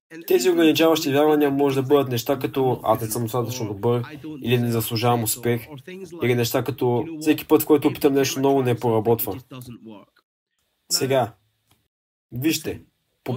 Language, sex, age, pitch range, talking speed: Bulgarian, male, 20-39, 115-145 Hz, 150 wpm